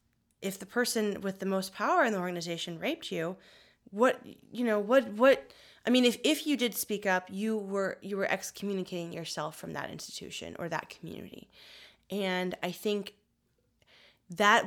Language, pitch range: English, 165-205 Hz